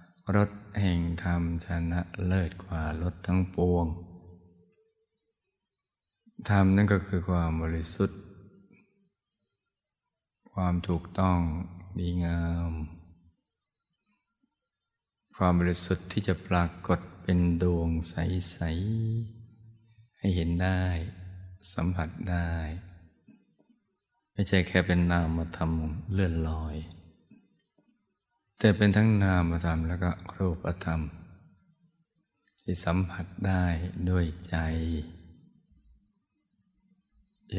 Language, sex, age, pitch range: Thai, male, 20-39, 85-95 Hz